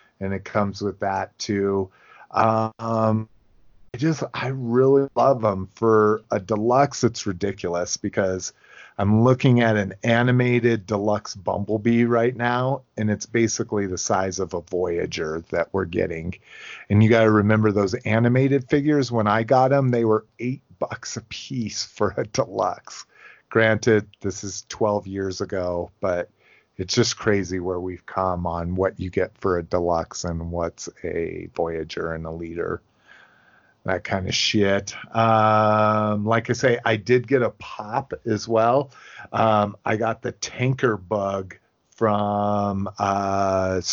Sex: male